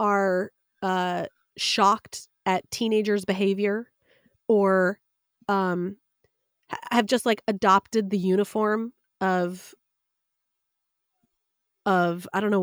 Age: 30-49